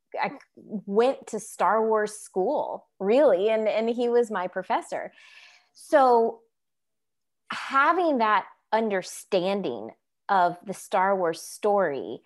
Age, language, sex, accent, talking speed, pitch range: 20-39, English, female, American, 110 wpm, 175-210 Hz